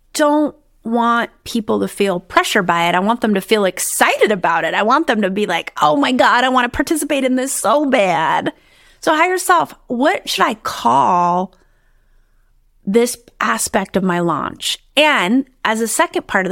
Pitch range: 190-275 Hz